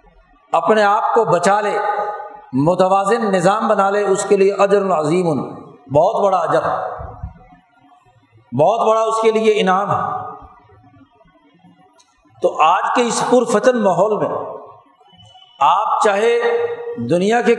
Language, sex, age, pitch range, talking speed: Urdu, male, 50-69, 190-235 Hz, 120 wpm